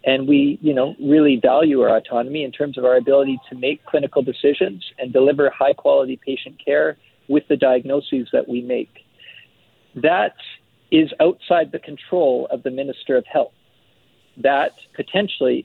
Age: 50-69